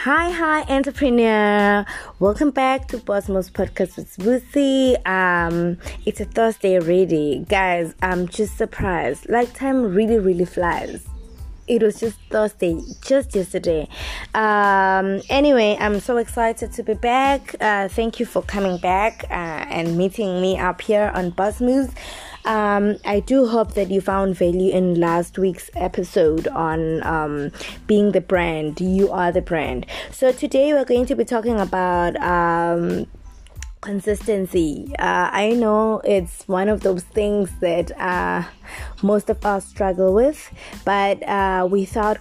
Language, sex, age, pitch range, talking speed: English, female, 20-39, 180-215 Hz, 145 wpm